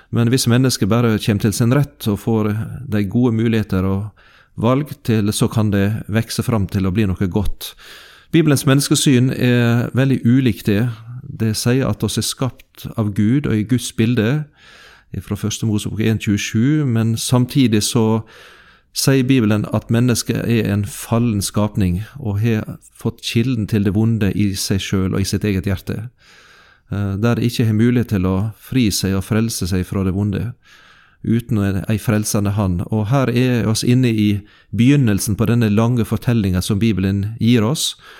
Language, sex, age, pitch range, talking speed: English, male, 40-59, 105-120 Hz, 175 wpm